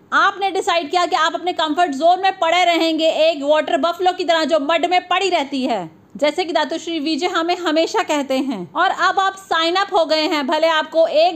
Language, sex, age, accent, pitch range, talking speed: Hindi, female, 30-49, native, 320-370 Hz, 65 wpm